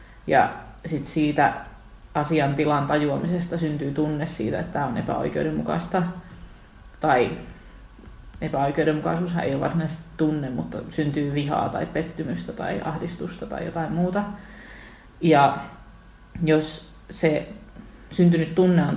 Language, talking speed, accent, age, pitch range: Finnish, 110 wpm, native, 30-49, 150-175 Hz